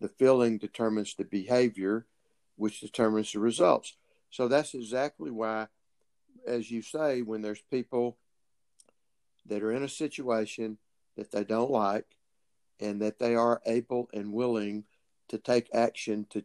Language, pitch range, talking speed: English, 105-120 Hz, 140 wpm